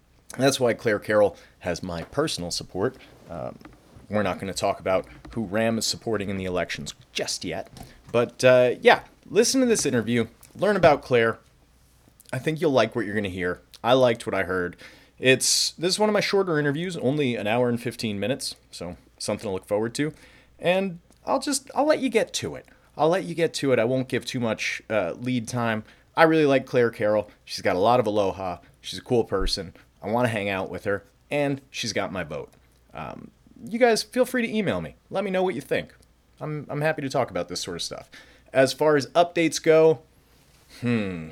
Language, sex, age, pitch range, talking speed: English, male, 30-49, 115-170 Hz, 215 wpm